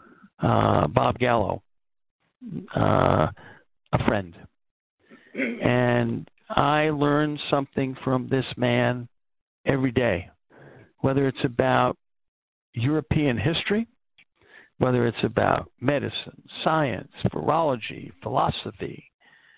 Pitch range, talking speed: 110-140 Hz, 85 wpm